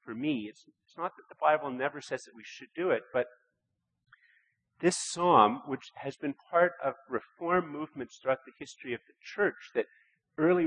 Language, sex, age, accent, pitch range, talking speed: English, male, 50-69, American, 125-155 Hz, 185 wpm